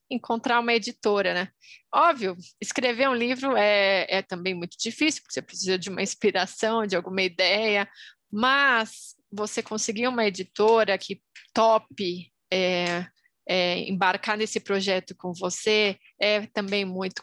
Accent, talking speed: Brazilian, 130 wpm